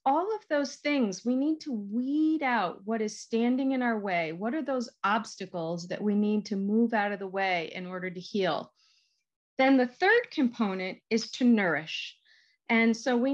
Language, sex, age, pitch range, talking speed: English, female, 40-59, 205-265 Hz, 190 wpm